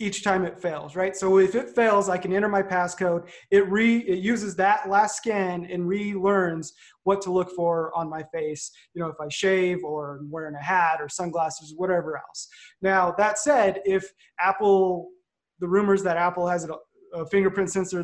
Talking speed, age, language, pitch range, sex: 190 wpm, 20-39, English, 165-195 Hz, male